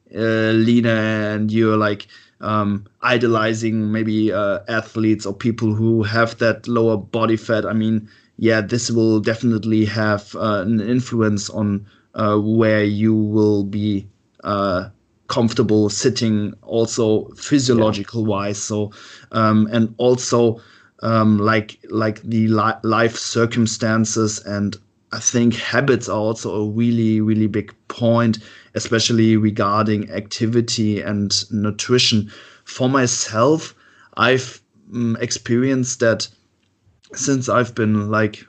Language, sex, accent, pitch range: German, male, German, 105-115 Hz